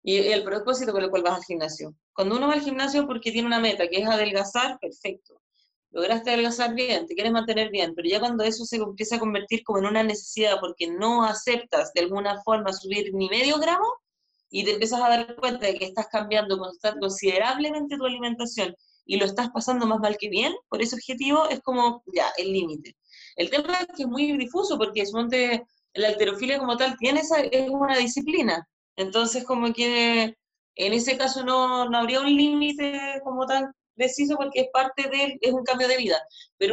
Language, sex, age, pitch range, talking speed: Spanish, female, 20-39, 205-260 Hz, 200 wpm